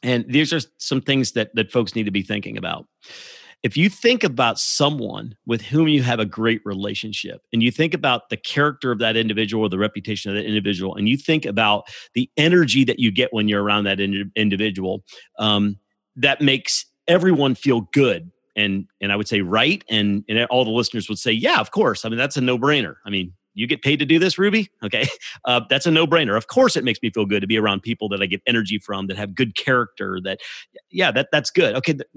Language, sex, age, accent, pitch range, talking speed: English, male, 40-59, American, 105-150 Hz, 230 wpm